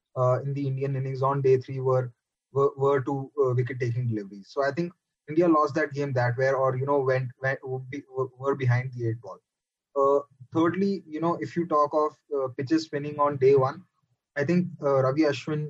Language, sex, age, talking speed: English, male, 20-39, 205 wpm